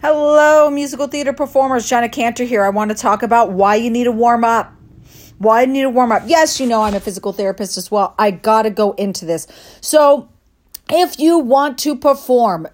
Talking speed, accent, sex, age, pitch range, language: 205 wpm, American, female, 40-59, 210-275 Hz, English